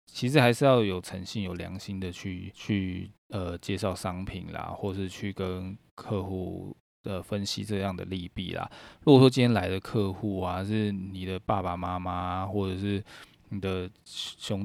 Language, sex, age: Chinese, male, 20-39